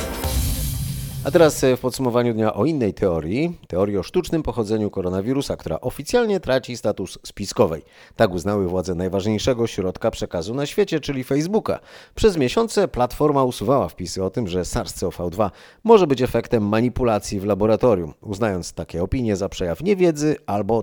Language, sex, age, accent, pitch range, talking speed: Polish, male, 30-49, native, 95-140 Hz, 145 wpm